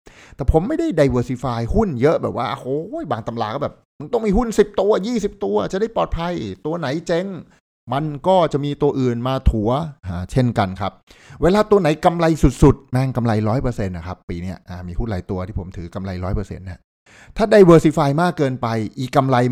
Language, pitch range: Thai, 105-150 Hz